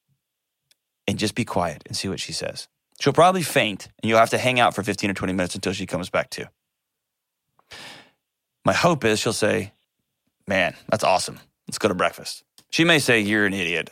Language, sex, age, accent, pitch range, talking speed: English, male, 30-49, American, 100-135 Hz, 200 wpm